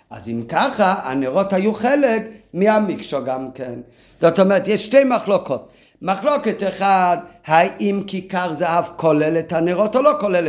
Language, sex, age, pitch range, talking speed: Hebrew, male, 50-69, 160-215 Hz, 145 wpm